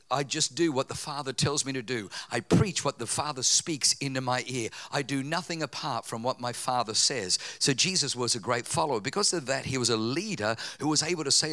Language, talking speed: English, 240 wpm